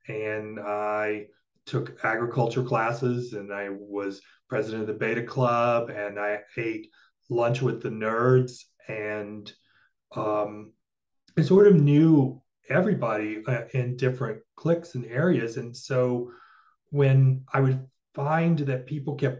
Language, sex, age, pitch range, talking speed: English, male, 30-49, 115-135 Hz, 125 wpm